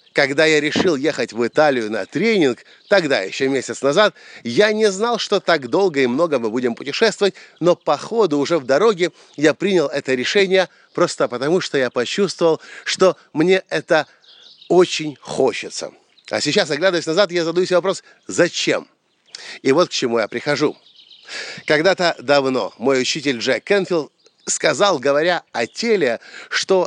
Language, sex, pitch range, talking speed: Russian, male, 140-195 Hz, 150 wpm